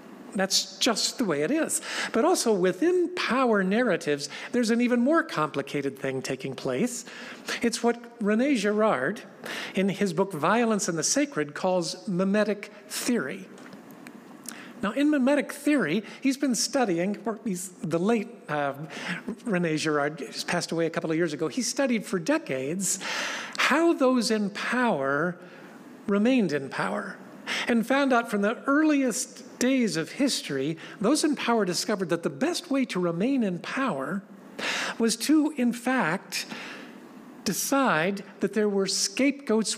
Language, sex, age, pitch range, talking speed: English, male, 50-69, 185-255 Hz, 145 wpm